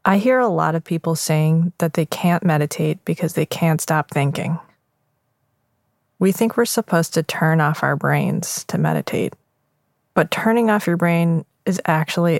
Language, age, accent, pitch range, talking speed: English, 20-39, American, 140-175 Hz, 165 wpm